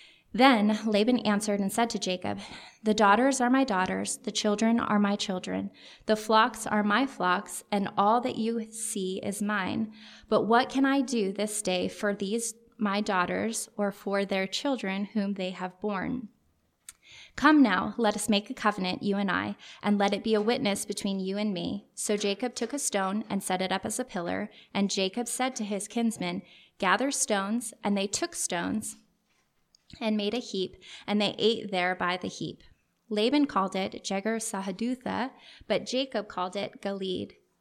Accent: American